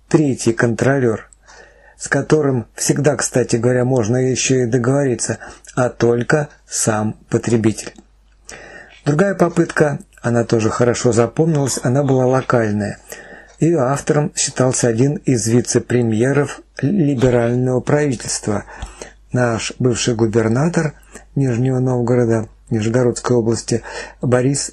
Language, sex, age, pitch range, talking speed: Russian, male, 50-69, 120-145 Hz, 95 wpm